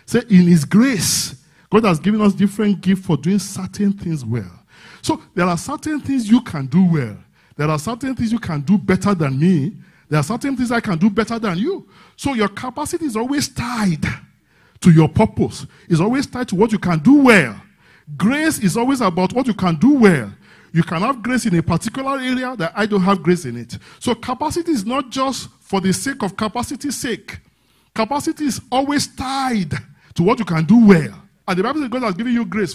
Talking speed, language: 215 wpm, English